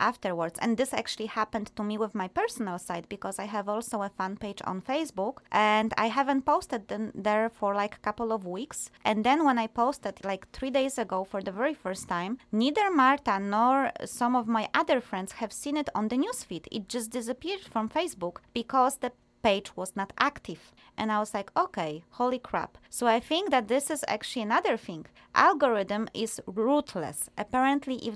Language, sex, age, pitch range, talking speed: English, female, 20-39, 200-260 Hz, 195 wpm